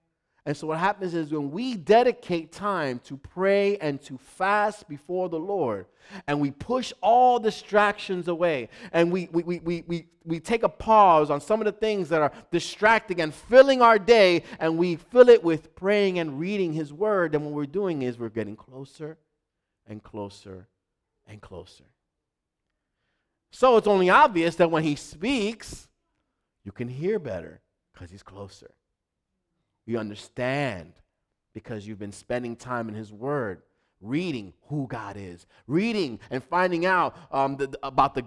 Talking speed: 155 wpm